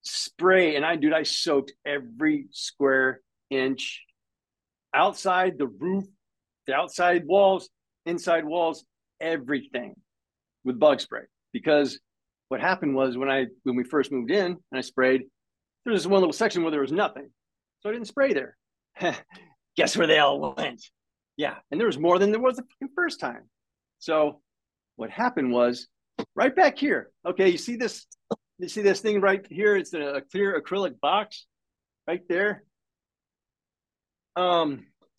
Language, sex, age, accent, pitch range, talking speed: English, male, 50-69, American, 140-205 Hz, 150 wpm